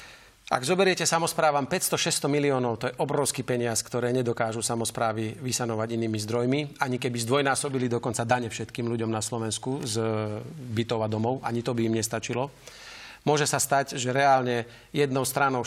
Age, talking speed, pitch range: 40-59, 155 wpm, 120-140 Hz